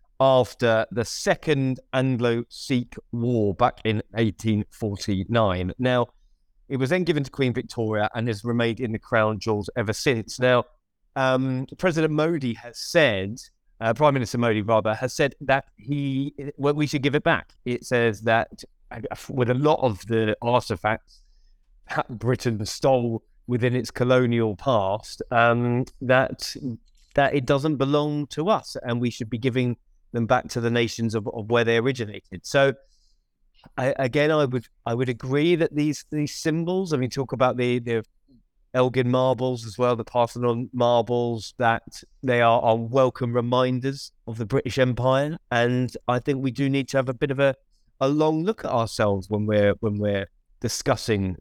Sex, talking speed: male, 165 wpm